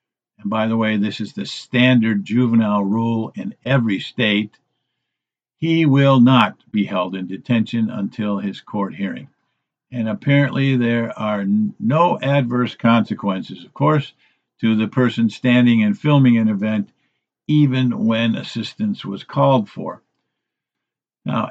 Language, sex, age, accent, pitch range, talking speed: English, male, 50-69, American, 110-140 Hz, 135 wpm